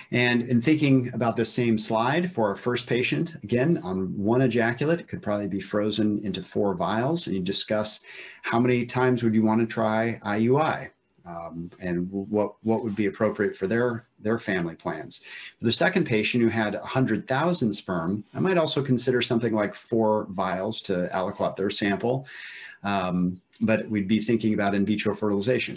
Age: 40-59